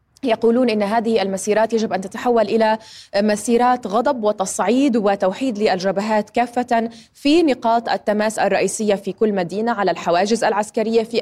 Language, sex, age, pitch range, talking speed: Arabic, female, 20-39, 205-245 Hz, 135 wpm